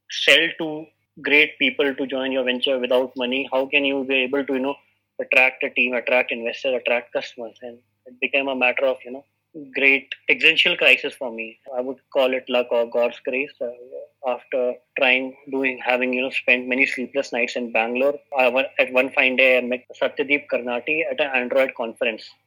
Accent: Indian